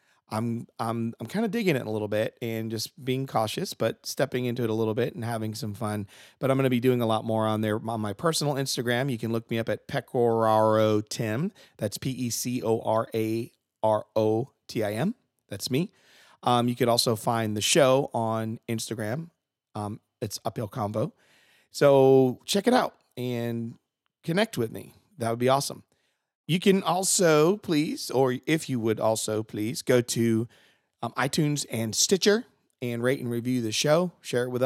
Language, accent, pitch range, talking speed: English, American, 110-140 Hz, 175 wpm